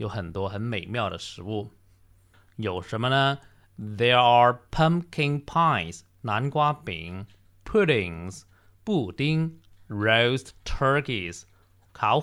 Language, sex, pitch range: Chinese, male, 95-125 Hz